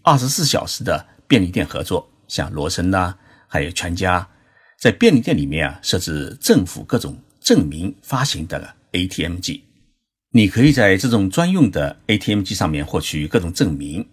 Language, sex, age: Chinese, male, 50-69